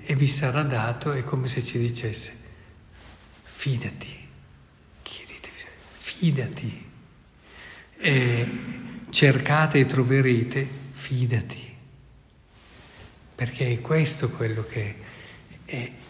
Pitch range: 120-140 Hz